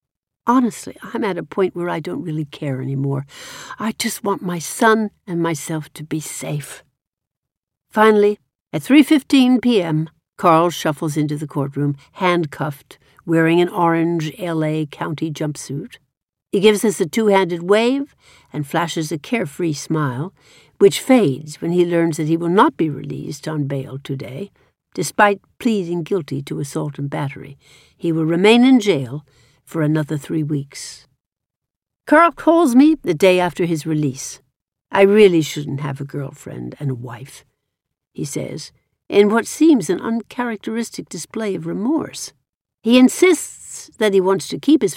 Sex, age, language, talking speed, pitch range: female, 60-79, English, 150 wpm, 145-205 Hz